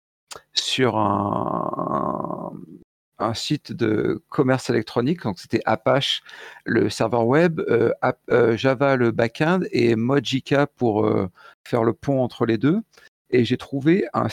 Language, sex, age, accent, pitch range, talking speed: French, male, 50-69, French, 120-175 Hz, 140 wpm